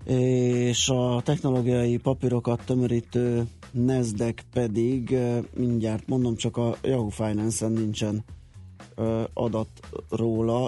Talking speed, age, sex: 90 wpm, 30-49, male